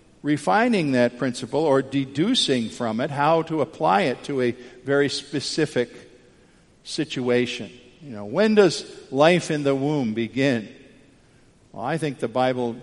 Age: 50-69